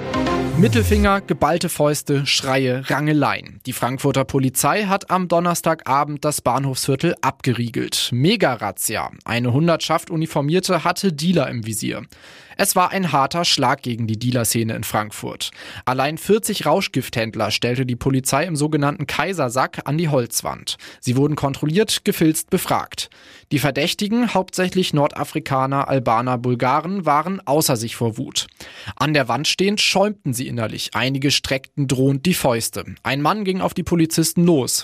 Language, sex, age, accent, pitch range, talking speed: German, male, 20-39, German, 130-170 Hz, 135 wpm